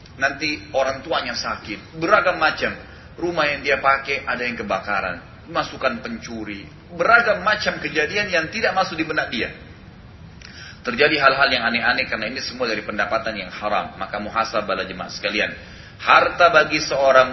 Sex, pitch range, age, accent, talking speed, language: male, 120-190 Hz, 30-49, native, 145 wpm, Indonesian